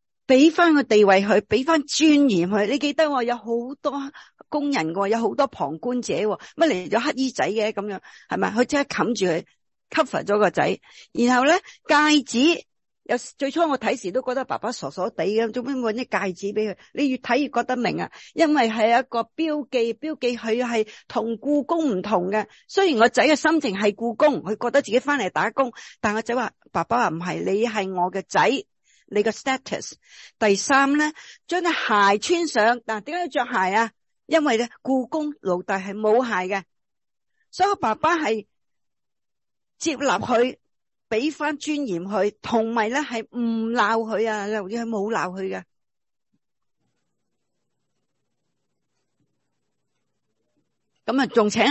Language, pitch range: English, 210-285 Hz